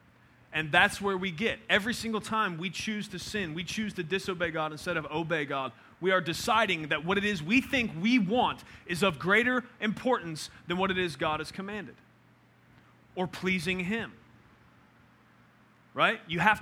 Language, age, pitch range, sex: English, 30-49, 155-210 Hz, male